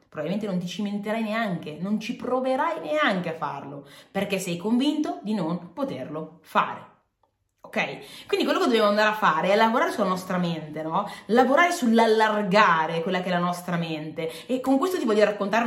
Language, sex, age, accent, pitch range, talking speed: Italian, female, 20-39, native, 170-250 Hz, 175 wpm